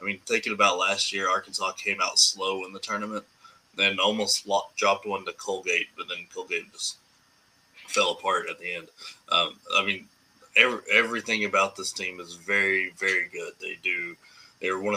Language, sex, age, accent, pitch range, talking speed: English, male, 20-39, American, 95-120 Hz, 185 wpm